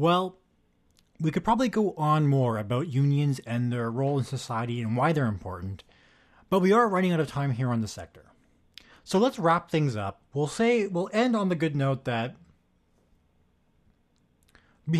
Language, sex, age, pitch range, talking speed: English, male, 20-39, 115-170 Hz, 175 wpm